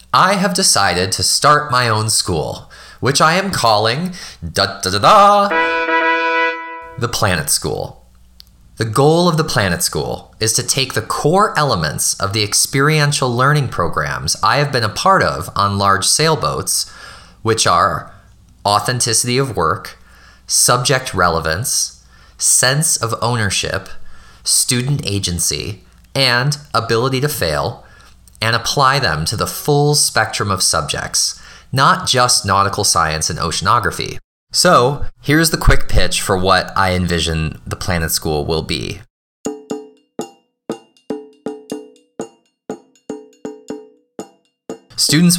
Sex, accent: male, American